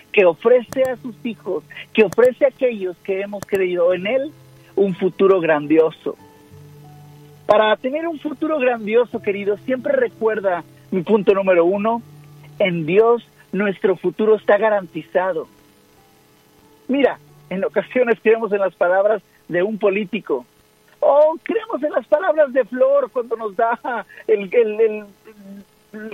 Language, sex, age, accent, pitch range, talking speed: Spanish, male, 50-69, Mexican, 190-245 Hz, 140 wpm